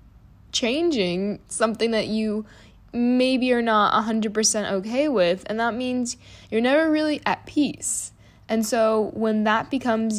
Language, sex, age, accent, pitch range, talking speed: English, female, 10-29, American, 175-225 Hz, 135 wpm